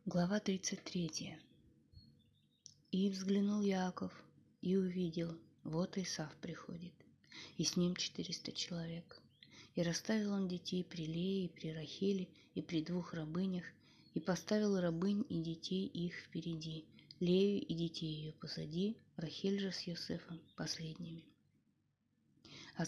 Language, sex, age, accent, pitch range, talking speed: Russian, female, 20-39, native, 165-185 Hz, 120 wpm